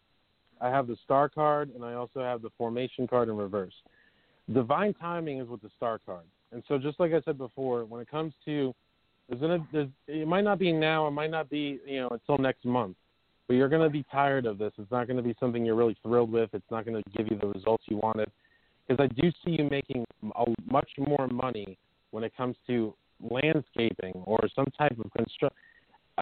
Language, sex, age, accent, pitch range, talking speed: English, male, 30-49, American, 120-150 Hz, 220 wpm